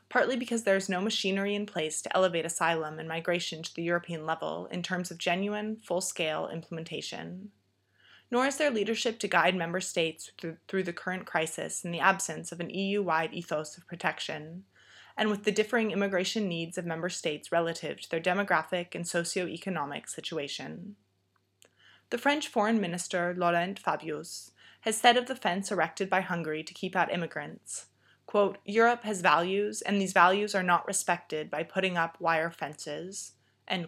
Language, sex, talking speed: English, female, 165 wpm